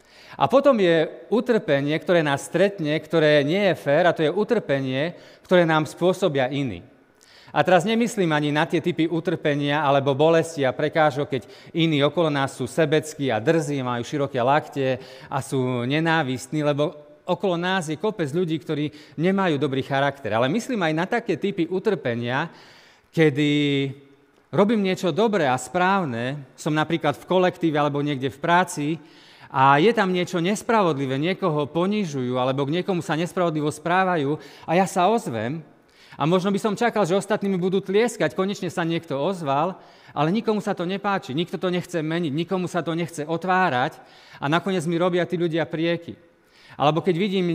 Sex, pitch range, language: male, 145-185 Hz, Slovak